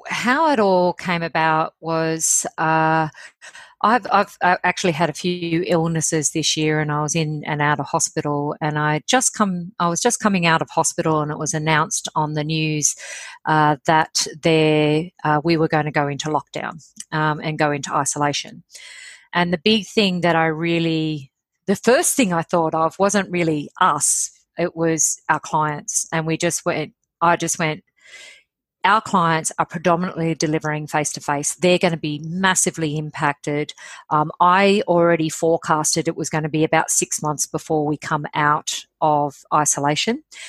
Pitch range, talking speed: 155-180 Hz, 170 wpm